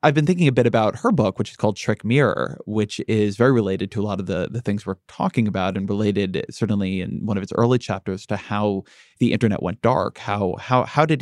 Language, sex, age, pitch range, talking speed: English, male, 20-39, 105-130 Hz, 245 wpm